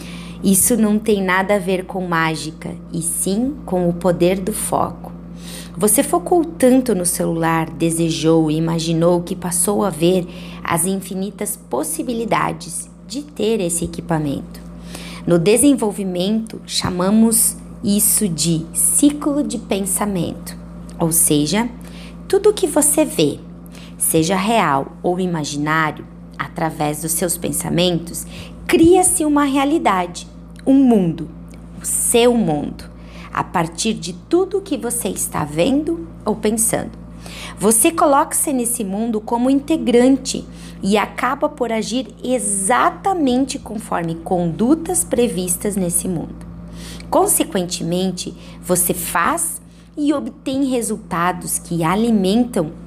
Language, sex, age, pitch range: Portuguese, female, 20-39, 165-240 Hz